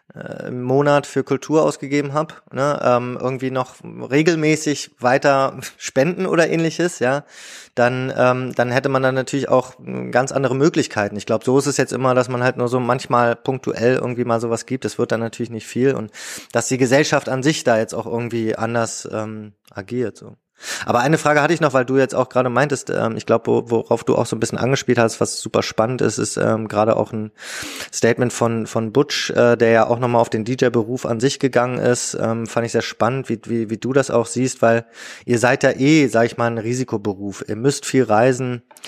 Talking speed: 215 wpm